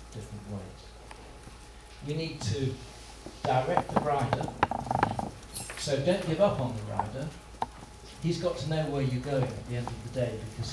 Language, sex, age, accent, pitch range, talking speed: Danish, male, 50-69, British, 115-145 Hz, 160 wpm